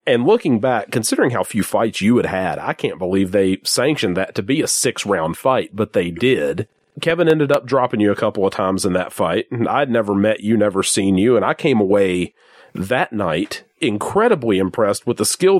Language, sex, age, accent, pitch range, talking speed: English, male, 40-59, American, 100-130 Hz, 210 wpm